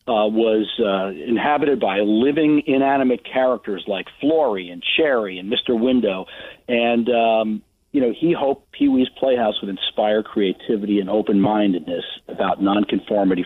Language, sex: English, male